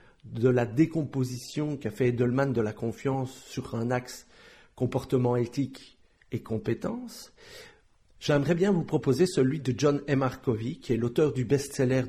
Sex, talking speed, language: male, 150 wpm, French